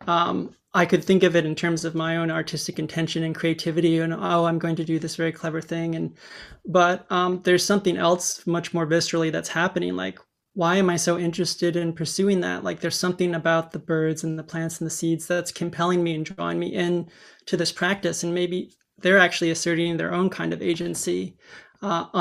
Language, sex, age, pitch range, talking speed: English, male, 20-39, 165-180 Hz, 210 wpm